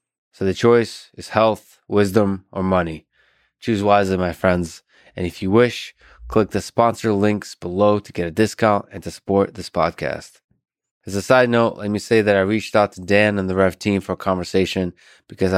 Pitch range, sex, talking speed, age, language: 95-105 Hz, male, 195 wpm, 20-39, English